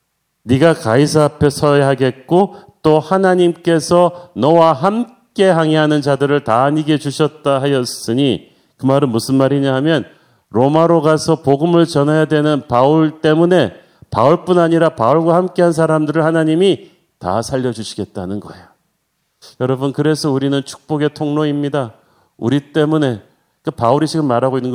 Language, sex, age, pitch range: Korean, male, 40-59, 130-160 Hz